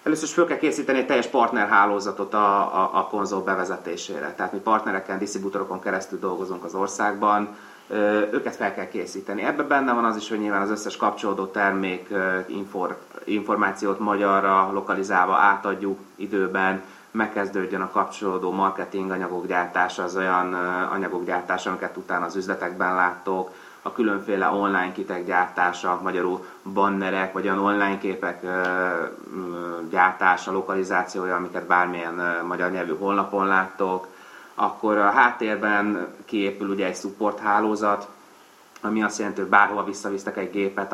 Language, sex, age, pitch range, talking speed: Hungarian, male, 30-49, 95-100 Hz, 130 wpm